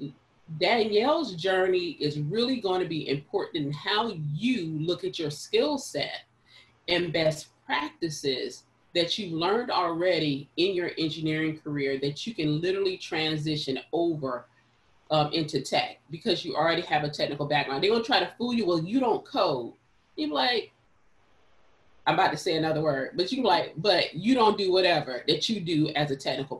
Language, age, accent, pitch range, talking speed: English, 30-49, American, 150-220 Hz, 170 wpm